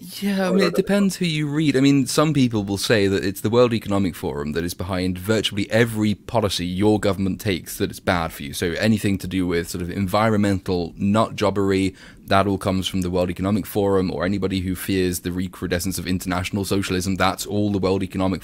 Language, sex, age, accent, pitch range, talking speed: English, male, 20-39, British, 95-115 Hz, 215 wpm